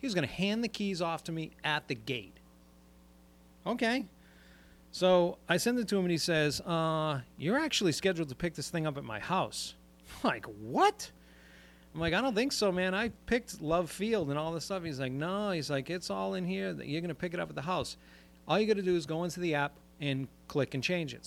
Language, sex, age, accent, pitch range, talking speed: English, male, 40-59, American, 115-175 Hz, 240 wpm